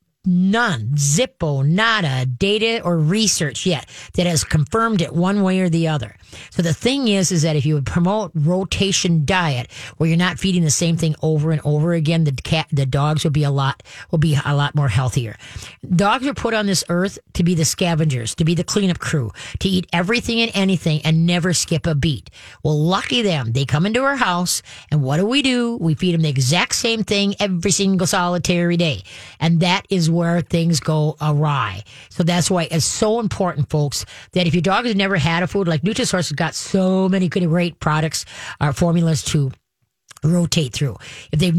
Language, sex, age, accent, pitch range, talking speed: English, female, 40-59, American, 150-185 Hz, 205 wpm